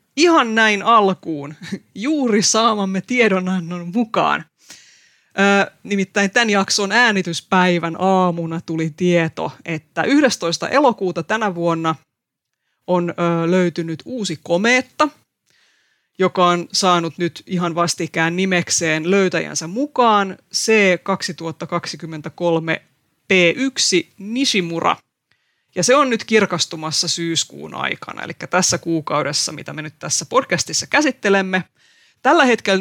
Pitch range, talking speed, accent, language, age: 170-210 Hz, 95 wpm, native, Finnish, 30-49